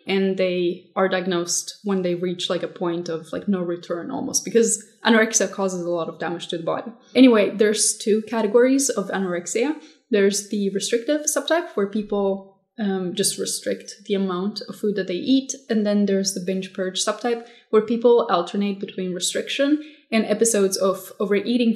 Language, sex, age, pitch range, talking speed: English, female, 20-39, 190-235 Hz, 175 wpm